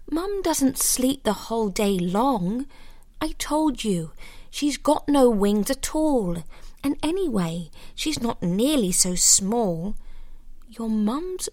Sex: female